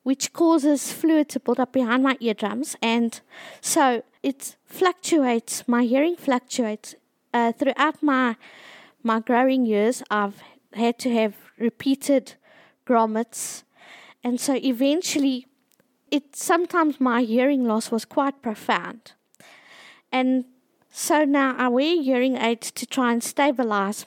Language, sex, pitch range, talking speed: English, female, 230-285 Hz, 125 wpm